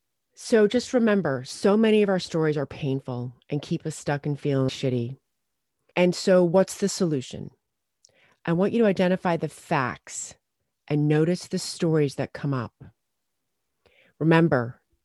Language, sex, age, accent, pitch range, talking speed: English, female, 30-49, American, 135-190 Hz, 150 wpm